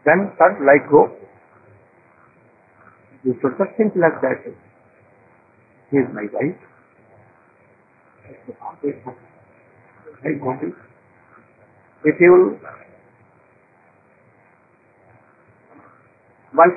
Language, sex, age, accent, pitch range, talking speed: English, male, 60-79, Indian, 125-165 Hz, 70 wpm